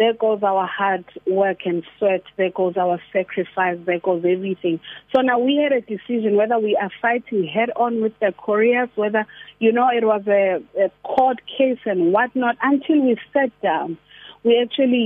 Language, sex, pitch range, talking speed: English, female, 190-235 Hz, 185 wpm